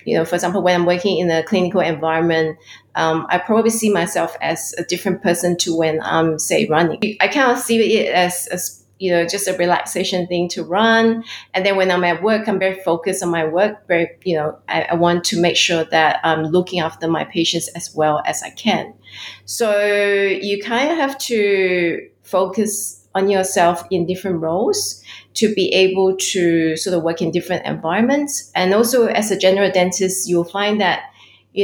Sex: female